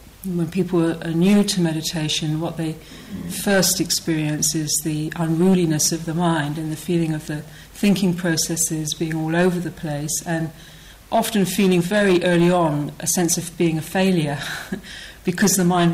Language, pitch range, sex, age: English, 160-185 Hz, female, 50-69